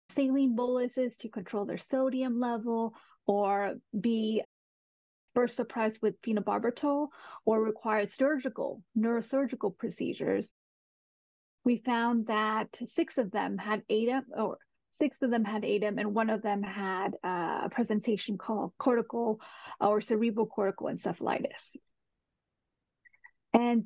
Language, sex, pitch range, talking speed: English, female, 215-255 Hz, 115 wpm